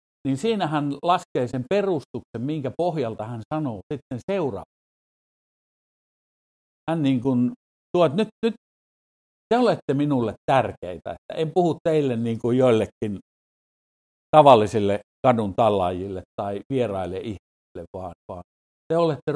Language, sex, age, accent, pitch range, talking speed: Finnish, male, 50-69, native, 95-145 Hz, 120 wpm